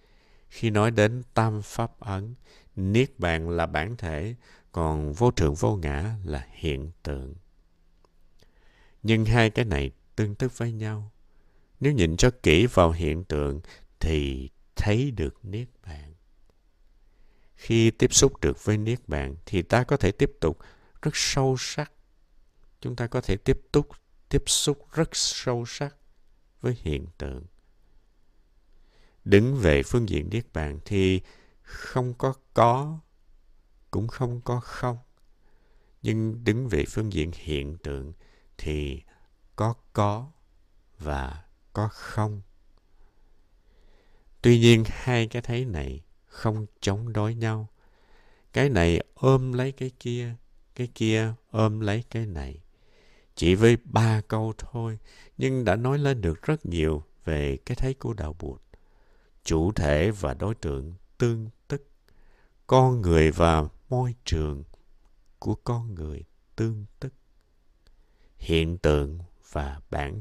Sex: male